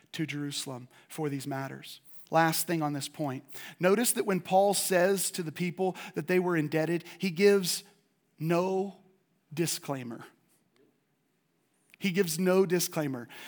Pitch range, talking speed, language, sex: 170-220 Hz, 135 wpm, English, male